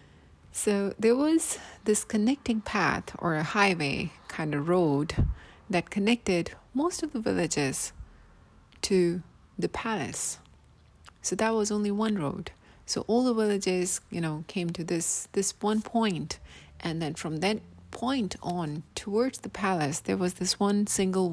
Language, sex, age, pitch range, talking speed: English, female, 30-49, 150-210 Hz, 150 wpm